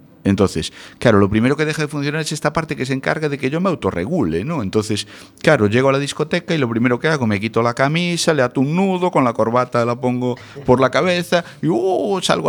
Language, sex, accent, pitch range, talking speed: Spanish, male, Spanish, 90-140 Hz, 240 wpm